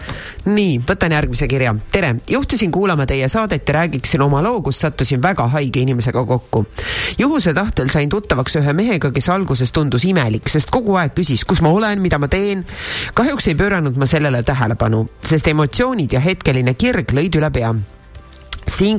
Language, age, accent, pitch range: English, 30-49, Finnish, 130-180 Hz